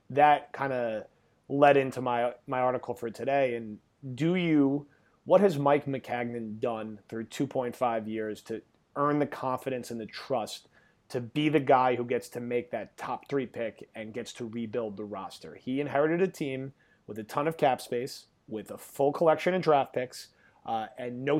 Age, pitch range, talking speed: 30-49, 115-145 Hz, 185 wpm